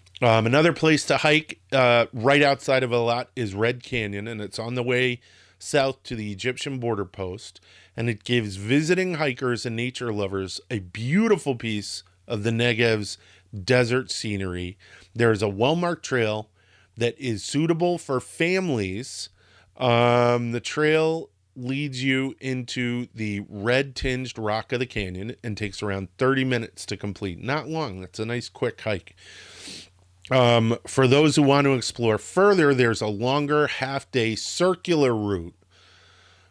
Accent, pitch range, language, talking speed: American, 100-135 Hz, English, 150 wpm